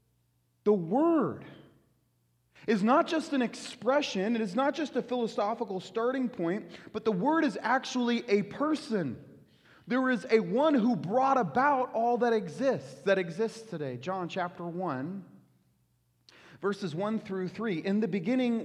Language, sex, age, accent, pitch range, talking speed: English, male, 30-49, American, 175-255 Hz, 145 wpm